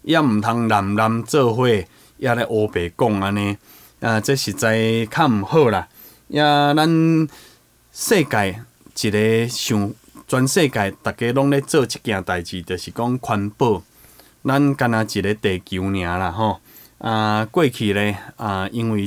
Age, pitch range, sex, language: 20-39, 100-130 Hz, male, Chinese